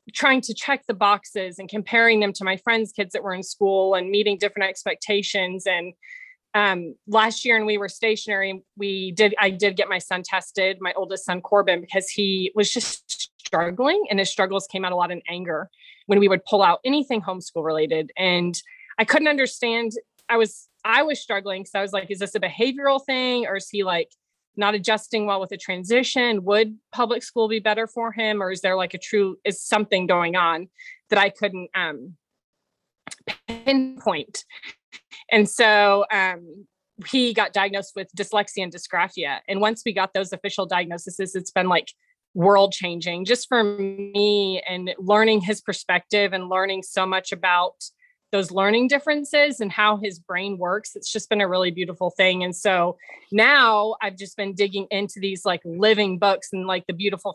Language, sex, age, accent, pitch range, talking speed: English, female, 20-39, American, 190-220 Hz, 185 wpm